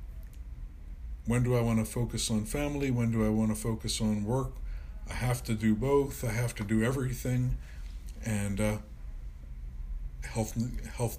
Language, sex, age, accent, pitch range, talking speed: English, male, 50-69, American, 70-115 Hz, 160 wpm